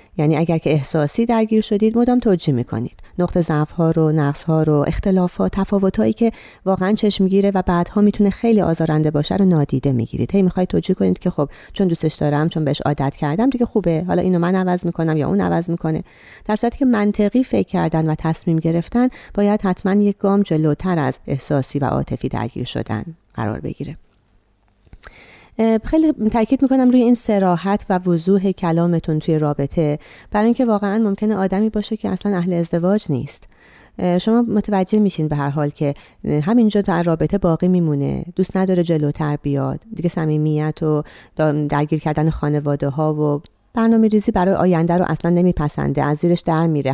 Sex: female